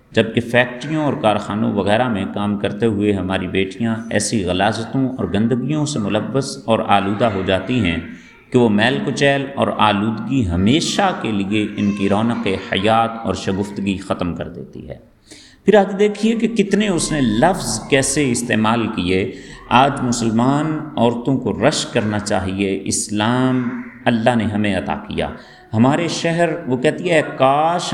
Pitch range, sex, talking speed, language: 105-135 Hz, male, 155 wpm, Urdu